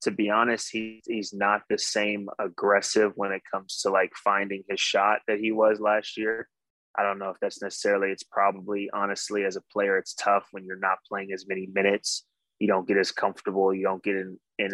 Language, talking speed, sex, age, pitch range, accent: English, 220 wpm, male, 20-39, 95-110 Hz, American